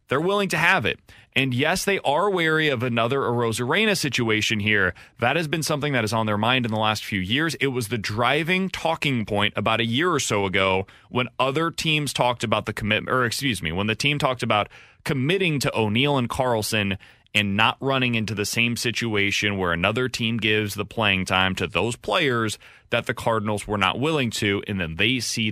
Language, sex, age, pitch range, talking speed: English, male, 30-49, 110-170 Hz, 210 wpm